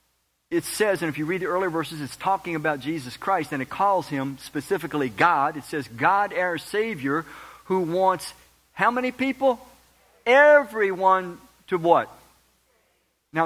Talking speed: 150 wpm